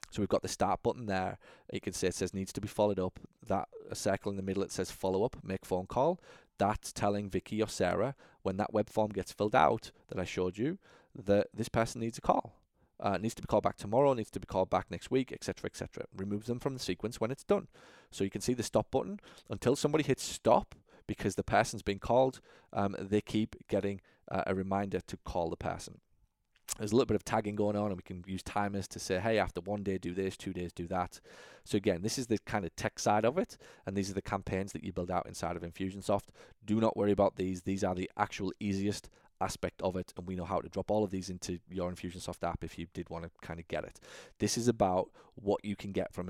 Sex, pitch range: male, 95-110 Hz